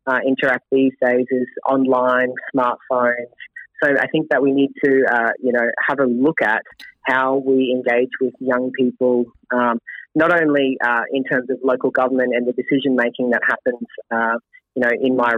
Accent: Australian